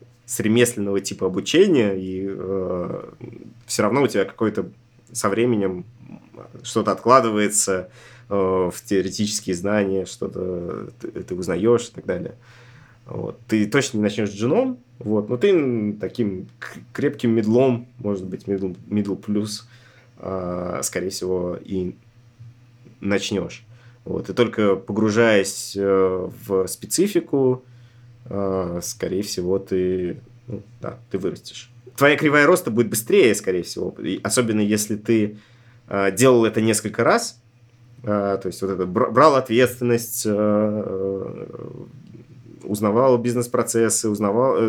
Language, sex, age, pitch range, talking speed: Russian, male, 20-39, 100-120 Hz, 110 wpm